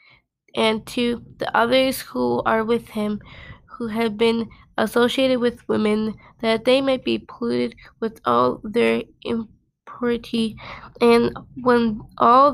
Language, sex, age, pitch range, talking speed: English, female, 20-39, 215-245 Hz, 125 wpm